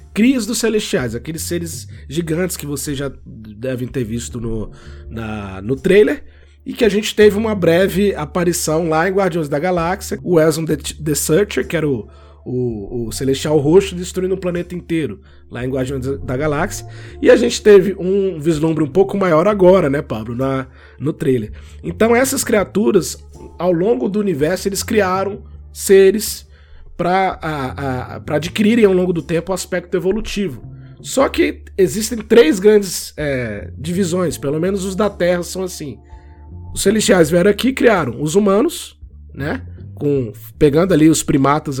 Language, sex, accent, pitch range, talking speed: Portuguese, male, Brazilian, 120-185 Hz, 155 wpm